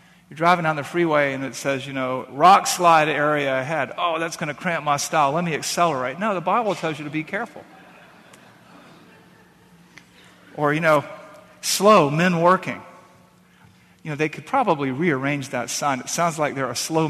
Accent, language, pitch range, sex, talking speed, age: American, English, 135-180 Hz, male, 185 wpm, 50-69